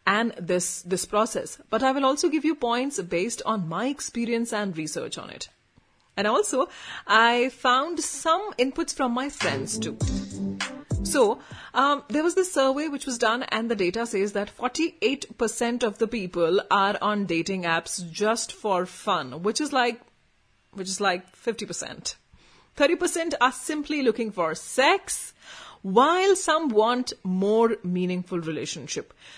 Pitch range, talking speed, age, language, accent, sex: 190-270 Hz, 155 wpm, 30-49, Hindi, native, female